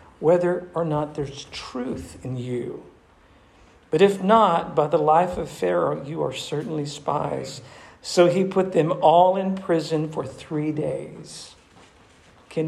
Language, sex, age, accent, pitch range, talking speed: English, male, 50-69, American, 140-185 Hz, 140 wpm